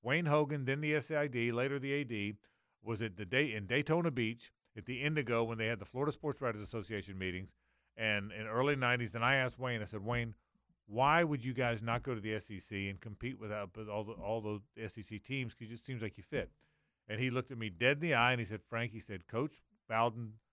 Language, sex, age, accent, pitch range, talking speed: English, male, 40-59, American, 110-150 Hz, 235 wpm